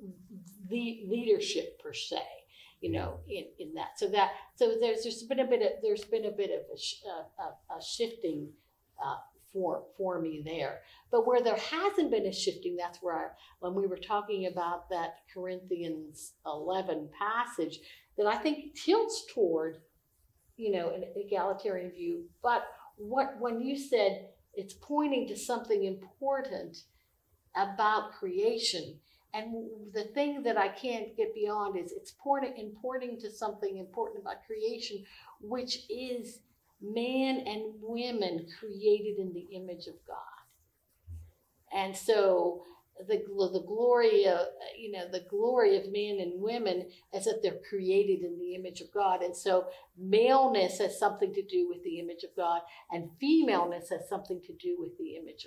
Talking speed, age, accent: 150 wpm, 60-79, American